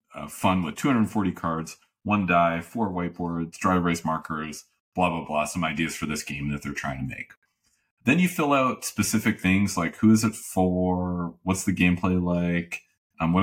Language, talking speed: English, 190 wpm